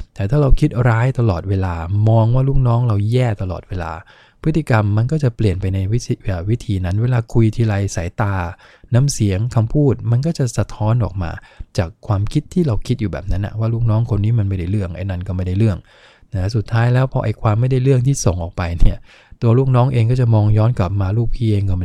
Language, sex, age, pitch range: English, male, 20-39, 100-120 Hz